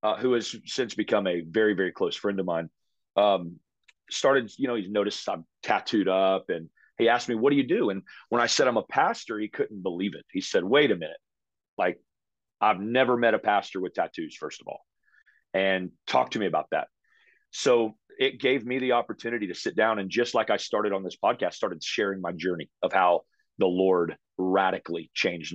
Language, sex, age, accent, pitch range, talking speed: English, male, 40-59, American, 95-115 Hz, 210 wpm